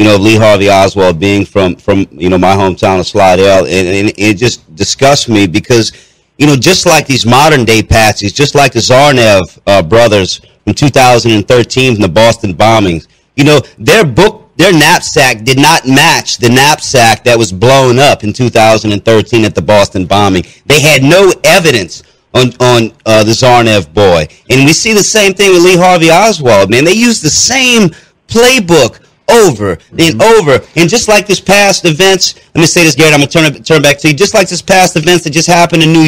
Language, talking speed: English, 200 wpm